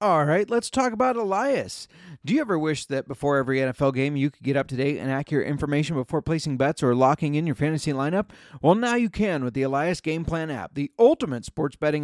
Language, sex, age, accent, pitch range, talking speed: English, male, 30-49, American, 145-190 Hz, 230 wpm